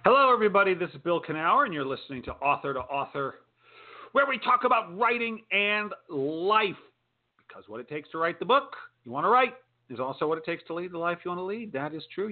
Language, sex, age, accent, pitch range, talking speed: English, male, 40-59, American, 125-180 Hz, 235 wpm